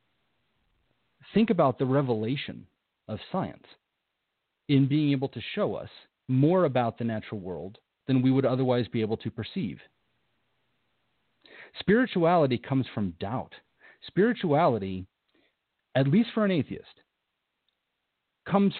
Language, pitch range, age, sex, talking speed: English, 120-145 Hz, 40-59, male, 115 wpm